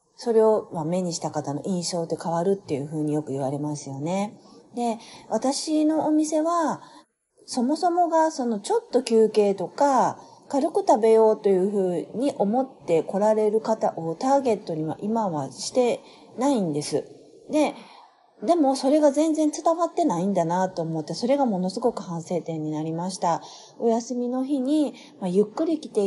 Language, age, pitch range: Japanese, 40-59, 165-260 Hz